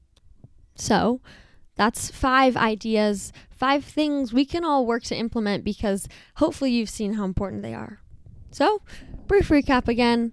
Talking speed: 140 wpm